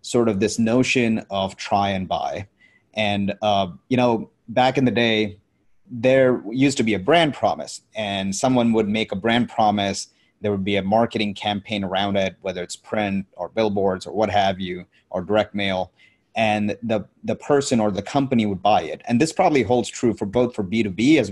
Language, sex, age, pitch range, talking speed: English, male, 30-49, 100-125 Hz, 195 wpm